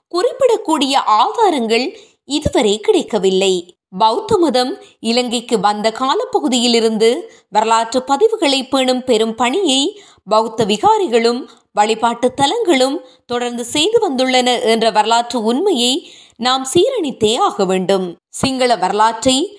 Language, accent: Tamil, native